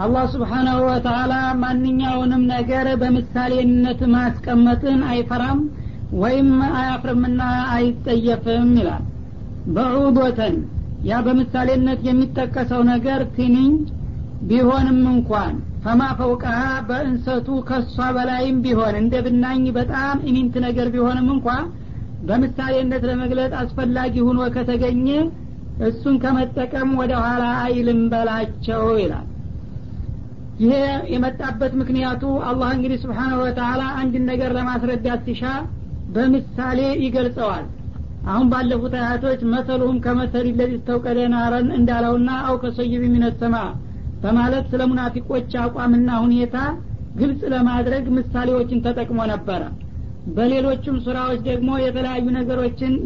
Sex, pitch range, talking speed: female, 240-255 Hz, 95 wpm